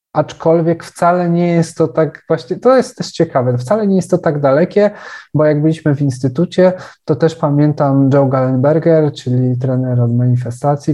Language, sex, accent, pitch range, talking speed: Polish, male, native, 125-160 Hz, 170 wpm